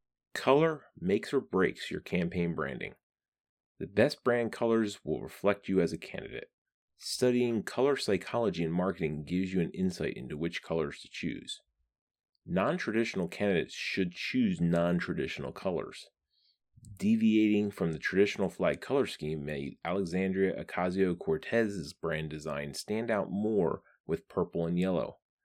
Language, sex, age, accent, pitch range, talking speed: English, male, 30-49, American, 85-100 Hz, 135 wpm